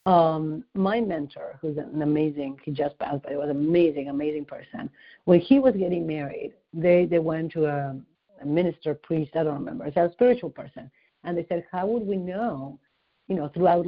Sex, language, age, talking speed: female, English, 50-69, 200 wpm